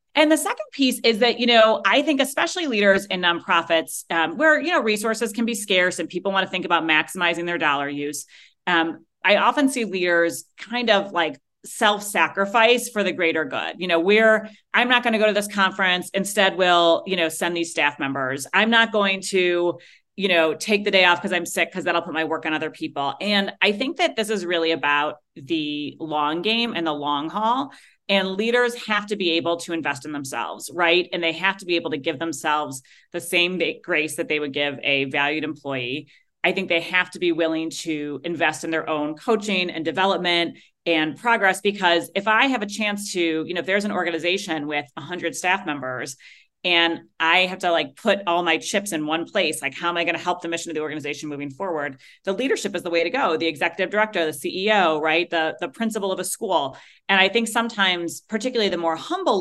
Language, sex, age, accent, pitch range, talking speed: English, female, 30-49, American, 160-205 Hz, 220 wpm